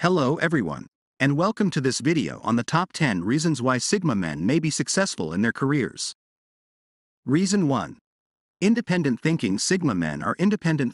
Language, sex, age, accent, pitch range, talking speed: English, male, 50-69, American, 125-175 Hz, 160 wpm